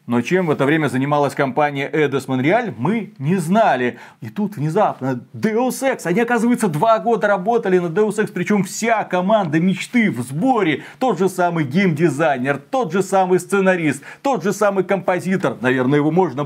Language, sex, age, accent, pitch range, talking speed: Russian, male, 30-49, native, 150-195 Hz, 165 wpm